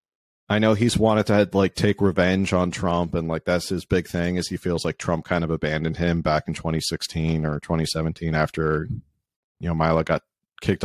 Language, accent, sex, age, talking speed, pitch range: English, American, male, 40-59, 200 wpm, 85-105 Hz